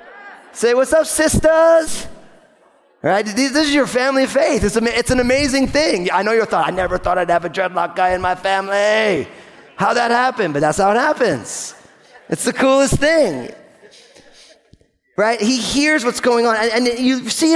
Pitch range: 195-260 Hz